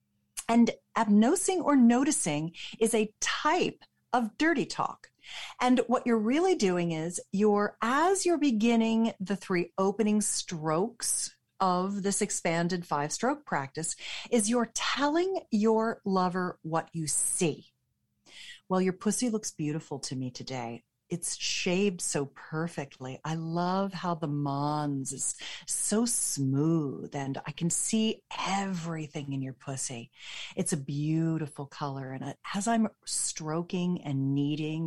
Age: 40-59